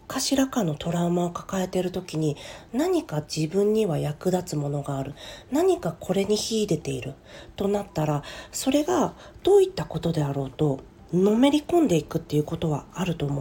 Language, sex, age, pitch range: Japanese, female, 40-59, 155-250 Hz